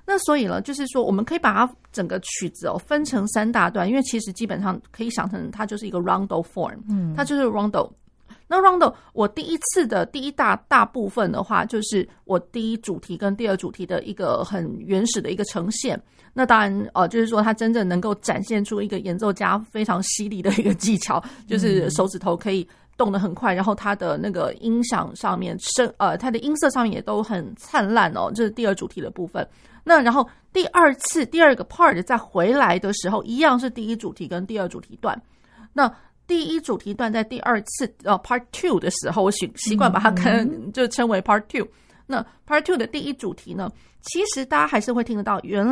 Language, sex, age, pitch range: Chinese, female, 30-49, 195-245 Hz